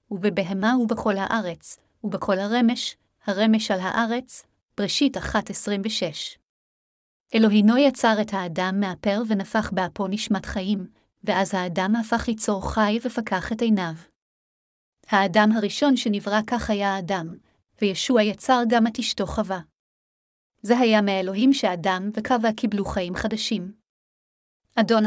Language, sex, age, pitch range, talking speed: Hebrew, female, 30-49, 195-230 Hz, 115 wpm